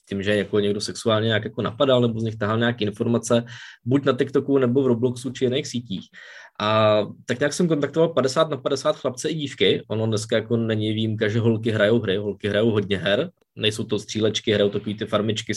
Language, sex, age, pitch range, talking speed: Czech, male, 20-39, 105-125 Hz, 215 wpm